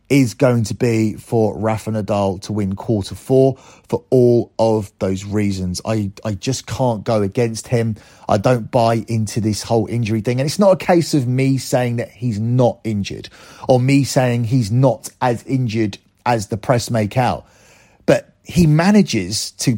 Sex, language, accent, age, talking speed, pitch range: male, English, British, 30-49, 180 wpm, 110-130 Hz